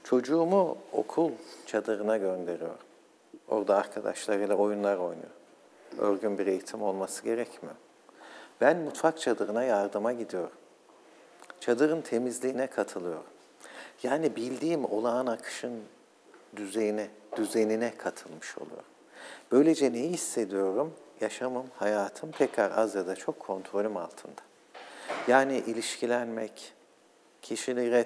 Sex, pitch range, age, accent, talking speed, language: male, 95-120 Hz, 50-69, native, 95 wpm, Turkish